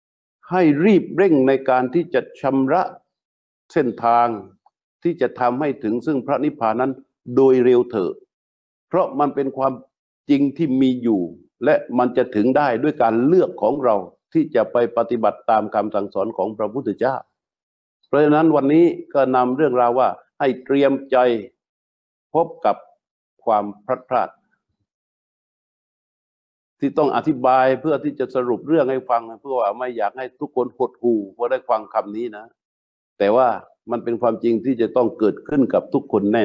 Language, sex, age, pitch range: Thai, male, 60-79, 110-140 Hz